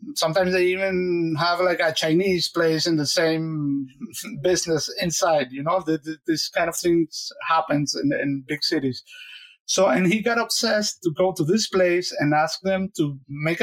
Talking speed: 170 wpm